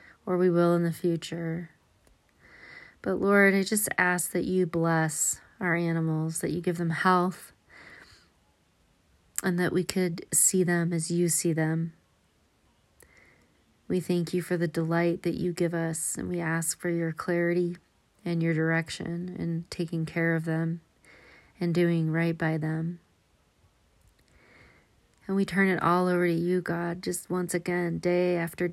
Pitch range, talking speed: 165-180 Hz, 155 wpm